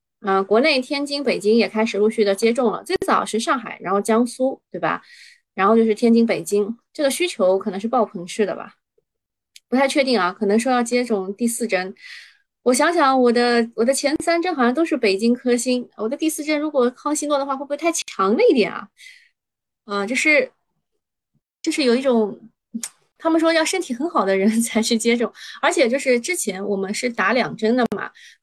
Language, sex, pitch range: Chinese, female, 220-310 Hz